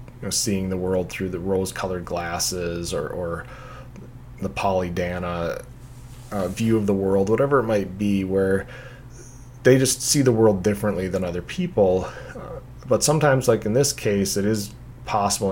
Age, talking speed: 30-49, 155 wpm